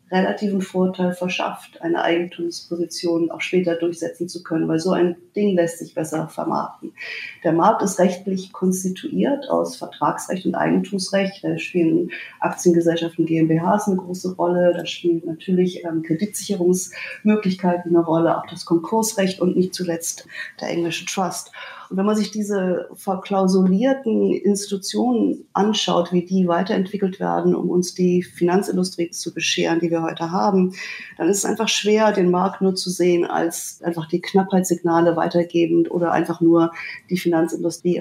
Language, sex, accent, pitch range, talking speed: German, female, German, 170-195 Hz, 145 wpm